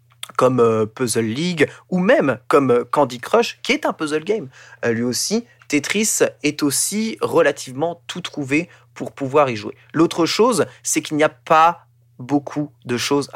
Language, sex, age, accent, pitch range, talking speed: French, male, 20-39, French, 120-160 Hz, 155 wpm